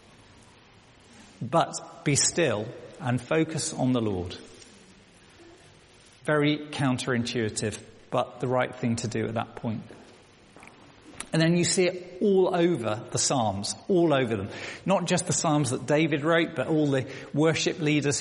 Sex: male